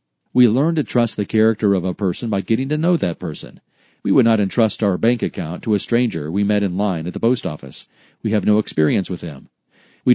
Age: 40-59